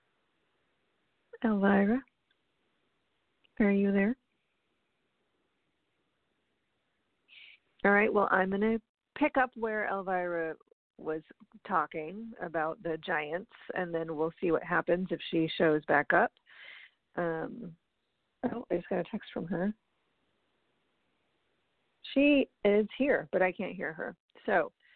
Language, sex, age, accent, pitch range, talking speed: English, female, 50-69, American, 175-225 Hz, 115 wpm